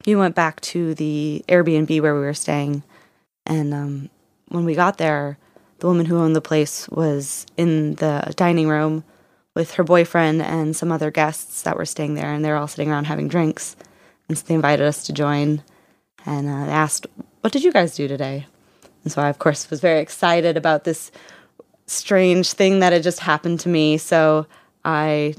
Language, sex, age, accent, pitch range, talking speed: English, female, 20-39, American, 150-170 Hz, 195 wpm